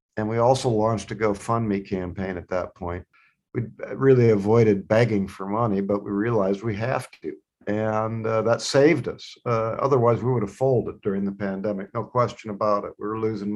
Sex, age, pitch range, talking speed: male, 50-69, 105-130 Hz, 190 wpm